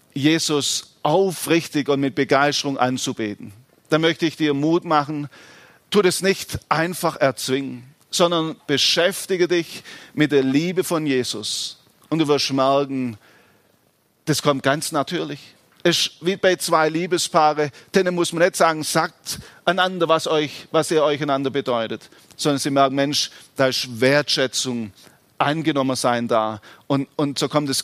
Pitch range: 135-170 Hz